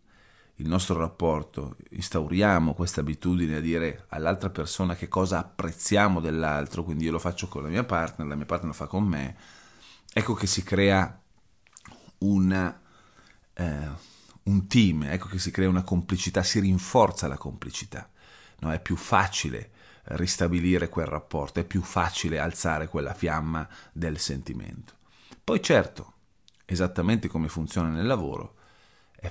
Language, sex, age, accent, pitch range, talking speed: Italian, male, 30-49, native, 80-95 Hz, 145 wpm